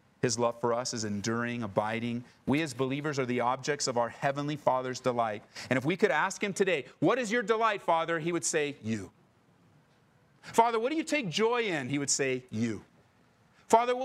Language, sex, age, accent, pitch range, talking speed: English, male, 30-49, American, 125-170 Hz, 195 wpm